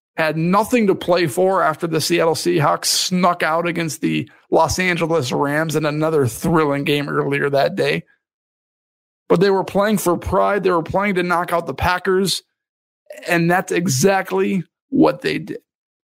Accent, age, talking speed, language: American, 50-69, 160 wpm, English